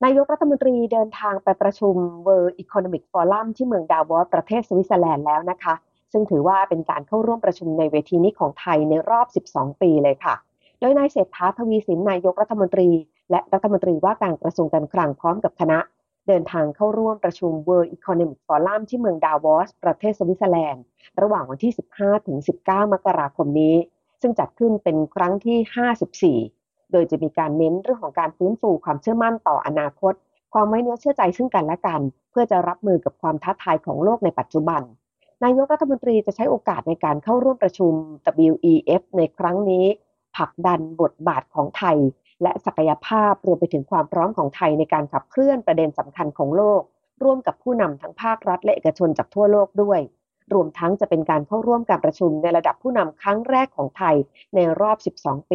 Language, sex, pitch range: Thai, female, 160-220 Hz